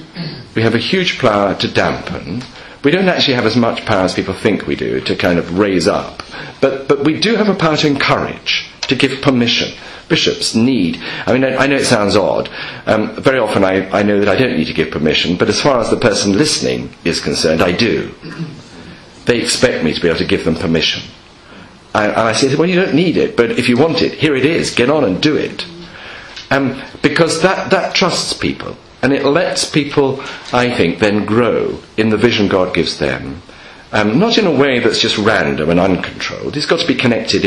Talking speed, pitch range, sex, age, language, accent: 215 wpm, 105-155 Hz, male, 50-69, English, British